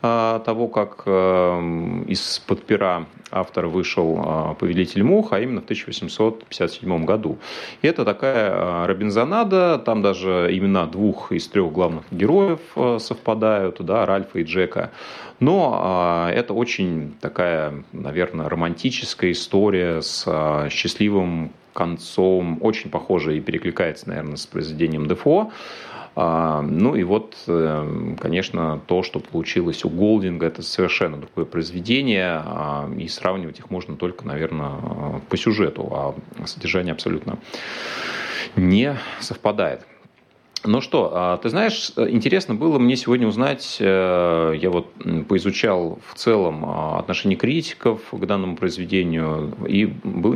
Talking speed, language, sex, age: 110 wpm, Russian, male, 30-49